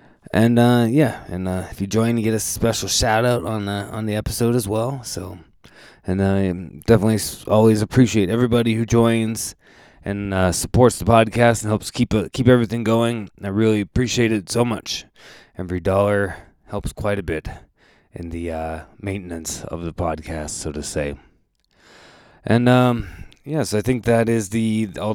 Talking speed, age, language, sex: 180 wpm, 20-39, English, male